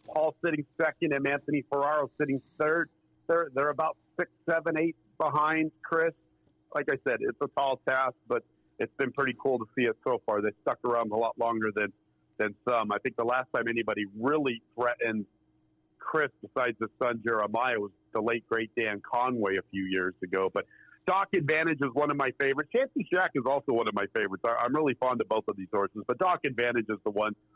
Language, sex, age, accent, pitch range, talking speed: English, male, 50-69, American, 110-150 Hz, 205 wpm